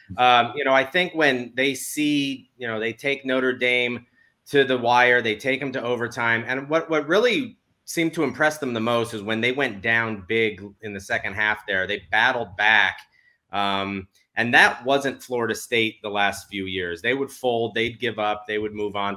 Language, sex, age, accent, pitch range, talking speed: English, male, 30-49, American, 105-130 Hz, 205 wpm